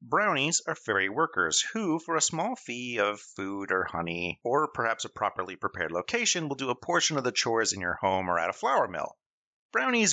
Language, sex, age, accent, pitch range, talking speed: English, male, 30-49, American, 95-135 Hz, 205 wpm